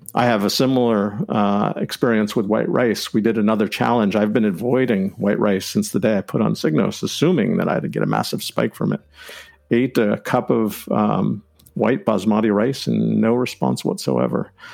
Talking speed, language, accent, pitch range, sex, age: 195 wpm, English, American, 105-125 Hz, male, 50-69